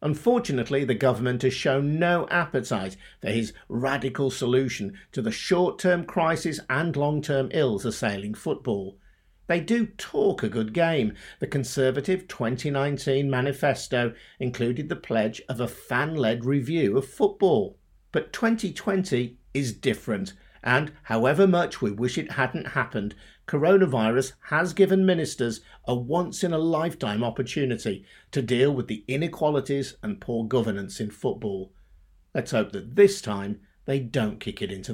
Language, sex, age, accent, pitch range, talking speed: English, male, 50-69, British, 110-165 Hz, 135 wpm